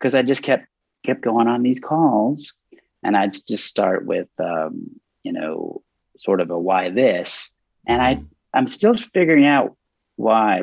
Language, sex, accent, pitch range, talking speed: English, male, American, 105-170 Hz, 165 wpm